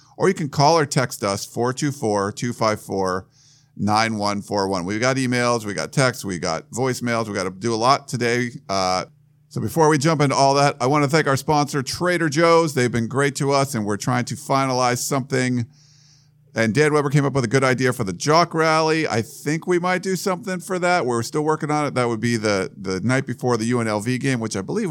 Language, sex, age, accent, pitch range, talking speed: English, male, 50-69, American, 110-145 Hz, 215 wpm